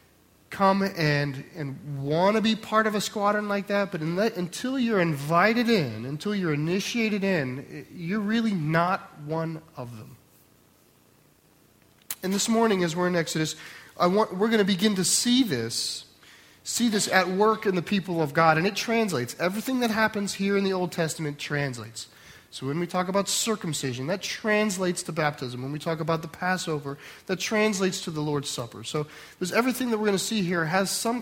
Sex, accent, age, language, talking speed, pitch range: male, American, 30-49, English, 185 wpm, 140-200 Hz